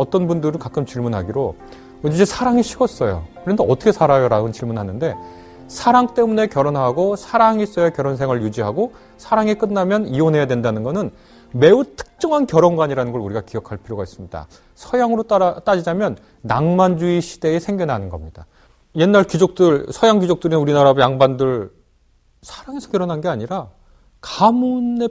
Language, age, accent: Korean, 30-49, native